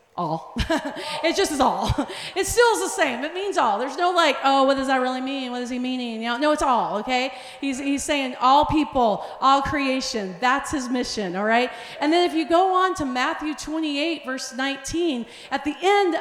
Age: 40-59